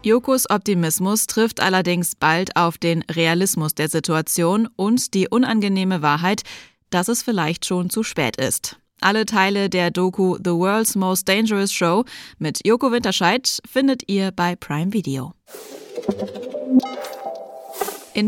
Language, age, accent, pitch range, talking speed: German, 20-39, German, 170-220 Hz, 130 wpm